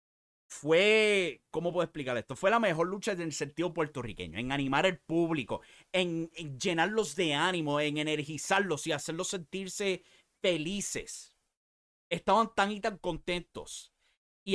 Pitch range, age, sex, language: 130-175 Hz, 30-49, male, English